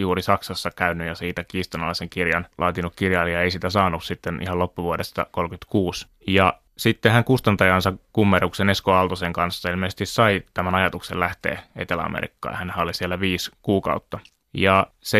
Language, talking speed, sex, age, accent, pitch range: Finnish, 145 wpm, male, 20-39, native, 90-100 Hz